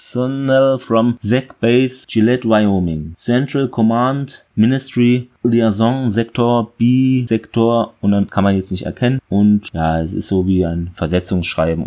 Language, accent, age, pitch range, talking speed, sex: German, German, 30-49, 95-115 Hz, 135 wpm, male